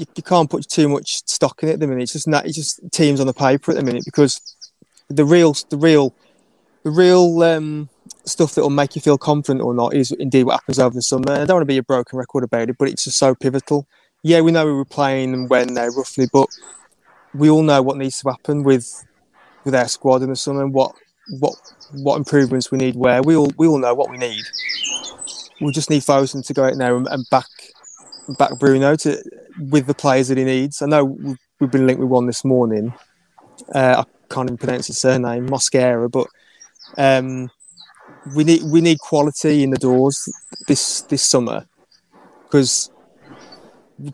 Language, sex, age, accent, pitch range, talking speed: English, male, 20-39, British, 130-150 Hz, 210 wpm